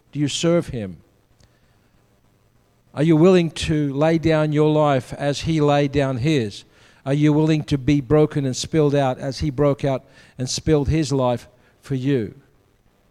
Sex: male